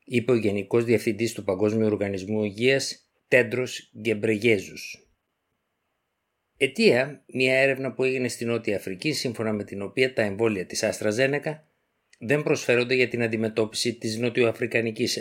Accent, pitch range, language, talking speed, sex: native, 110-140 Hz, Greek, 135 wpm, male